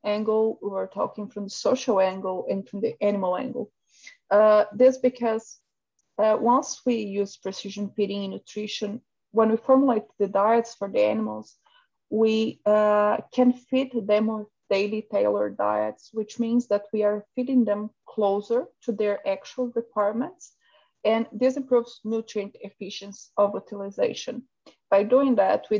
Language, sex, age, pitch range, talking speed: English, female, 30-49, 200-230 Hz, 145 wpm